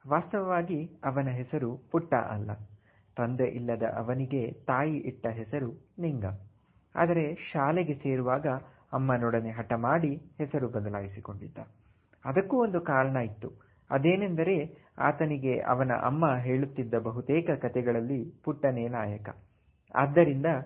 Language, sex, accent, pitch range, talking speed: Kannada, male, native, 115-150 Hz, 100 wpm